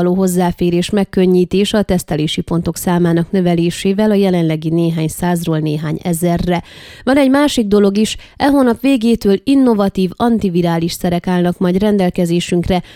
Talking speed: 130 wpm